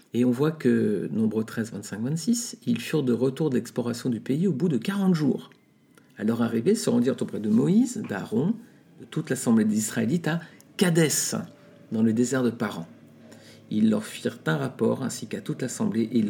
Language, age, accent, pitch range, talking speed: French, 50-69, French, 115-185 Hz, 200 wpm